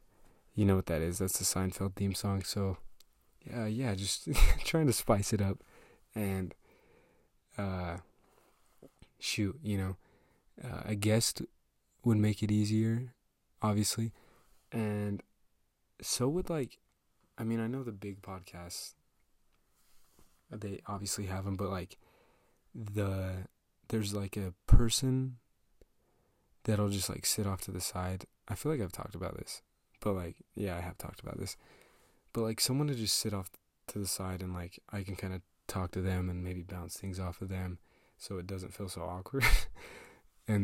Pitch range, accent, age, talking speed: 95-110 Hz, American, 20-39, 165 wpm